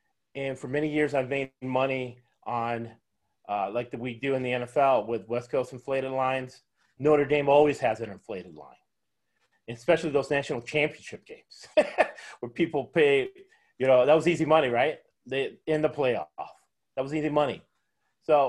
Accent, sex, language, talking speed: American, male, English, 165 wpm